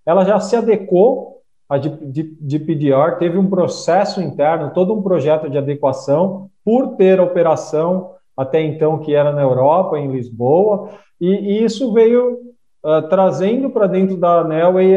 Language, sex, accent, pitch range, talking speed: Portuguese, male, Brazilian, 145-185 Hz, 140 wpm